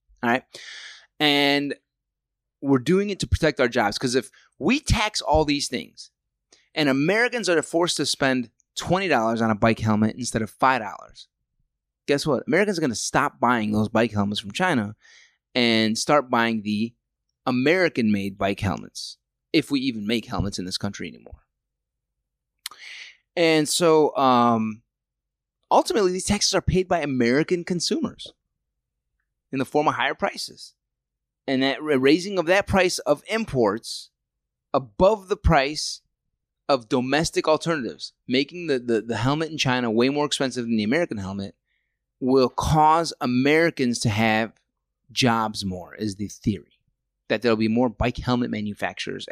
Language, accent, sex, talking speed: English, American, male, 150 wpm